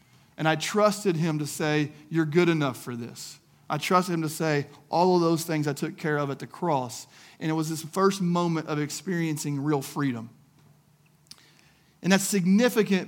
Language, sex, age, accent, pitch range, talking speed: English, male, 40-59, American, 150-190 Hz, 185 wpm